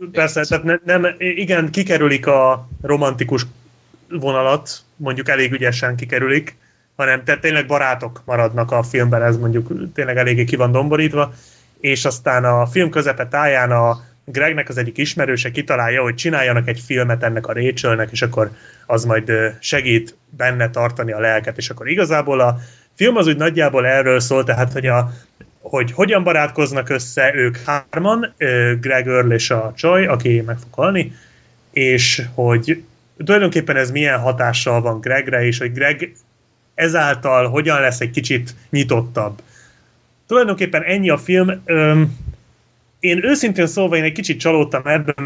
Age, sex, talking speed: 30-49, male, 150 wpm